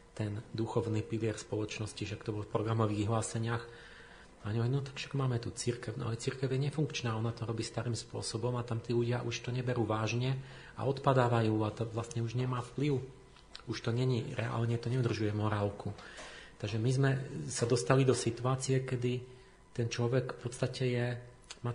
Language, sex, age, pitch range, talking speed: Slovak, male, 40-59, 105-125 Hz, 170 wpm